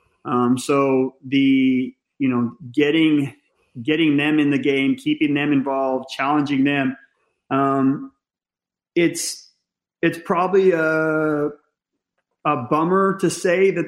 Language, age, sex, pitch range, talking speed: English, 30-49, male, 135-155 Hz, 110 wpm